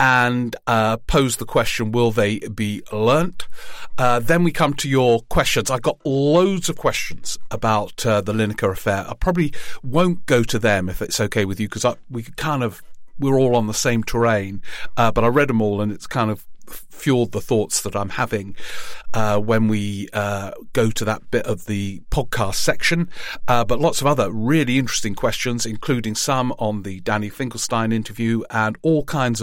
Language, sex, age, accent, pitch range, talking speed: English, male, 40-59, British, 105-130 Hz, 190 wpm